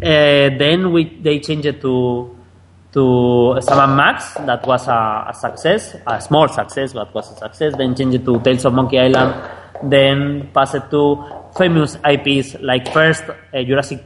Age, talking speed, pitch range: 30-49, 165 wpm, 130-155 Hz